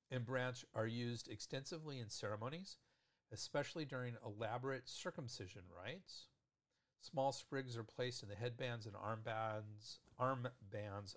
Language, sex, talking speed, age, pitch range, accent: English, male, 125 wpm, 50-69, 105-130 Hz, American